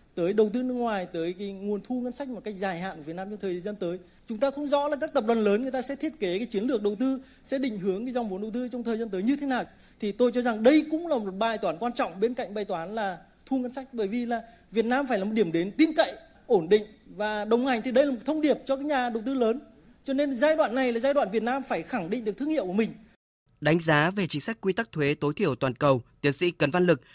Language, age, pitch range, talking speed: Vietnamese, 20-39, 150-230 Hz, 310 wpm